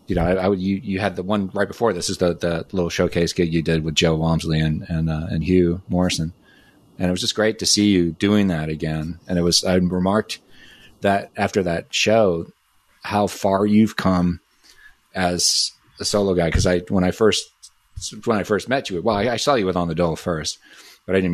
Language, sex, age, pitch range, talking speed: English, male, 30-49, 85-105 Hz, 230 wpm